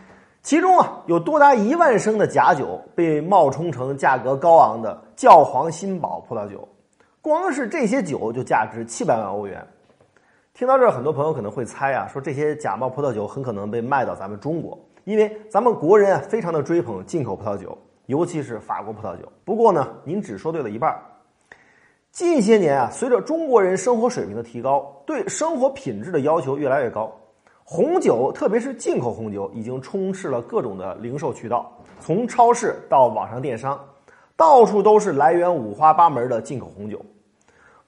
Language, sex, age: Chinese, male, 30-49